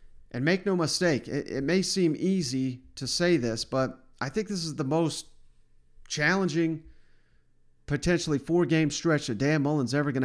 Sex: male